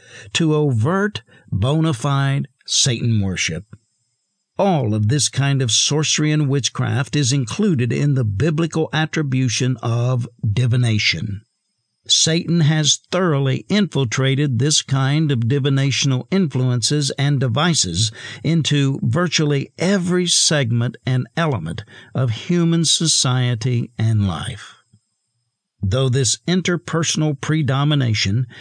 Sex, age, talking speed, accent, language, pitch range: male, 60-79, 100 wpm, American, English, 120-155 Hz